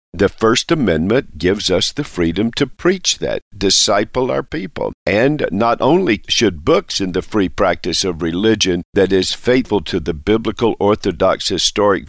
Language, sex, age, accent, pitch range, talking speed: English, male, 50-69, American, 95-125 Hz, 160 wpm